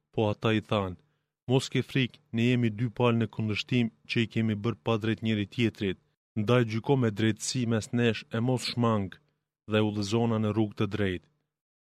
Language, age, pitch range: Greek, 30-49, 105-120 Hz